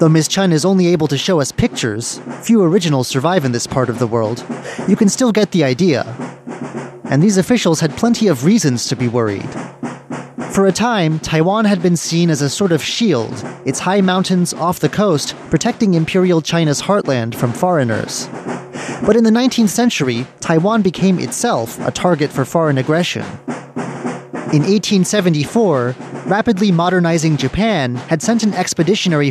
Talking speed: 165 wpm